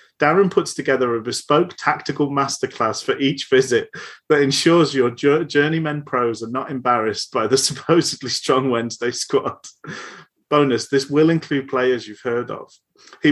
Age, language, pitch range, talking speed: 30-49, English, 130-165 Hz, 150 wpm